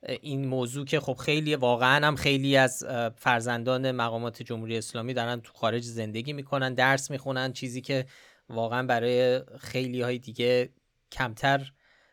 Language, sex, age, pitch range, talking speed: Persian, male, 20-39, 125-155 Hz, 140 wpm